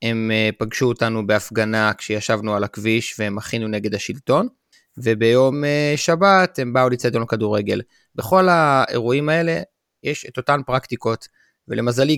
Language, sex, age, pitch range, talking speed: Hebrew, male, 30-49, 115-140 Hz, 130 wpm